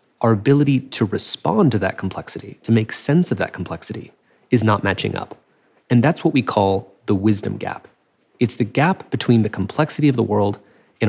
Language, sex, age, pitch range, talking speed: English, male, 30-49, 100-130 Hz, 190 wpm